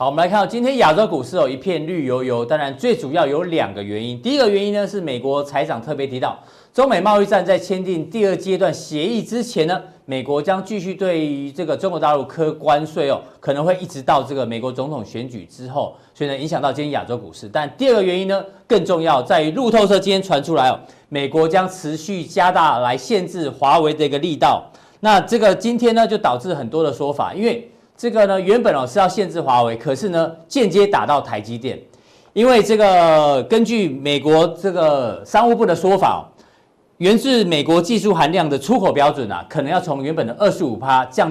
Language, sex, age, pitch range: Chinese, male, 40-59, 140-200 Hz